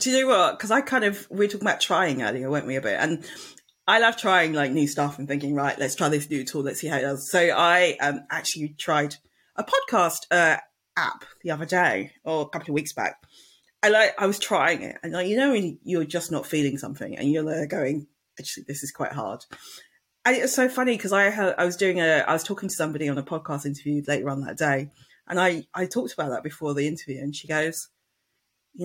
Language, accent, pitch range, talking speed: English, British, 150-235 Hz, 250 wpm